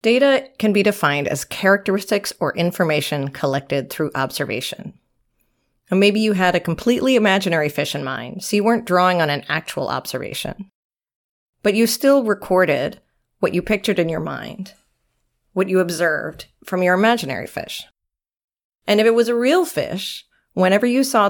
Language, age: English, 30-49